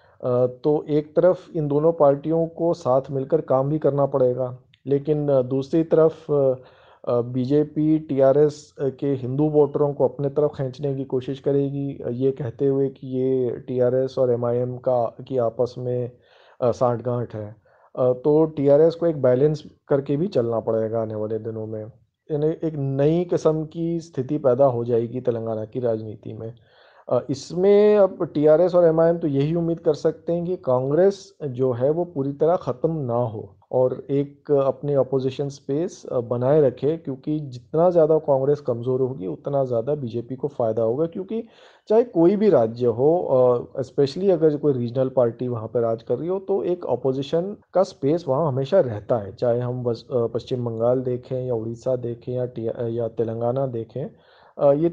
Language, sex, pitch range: Hindi, male, 125-155 Hz